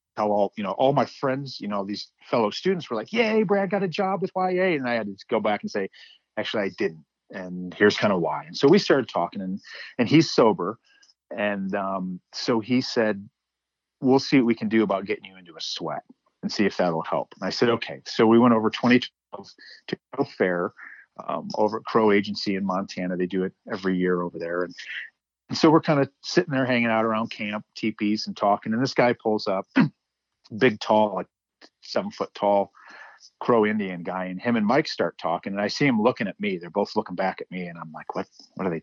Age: 40-59